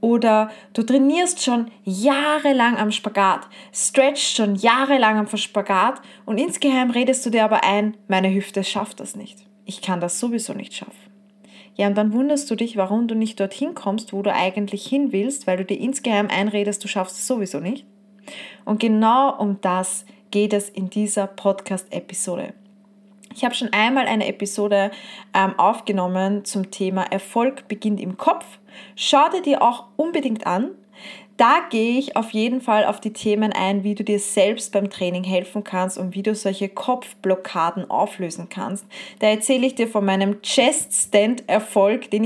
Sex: female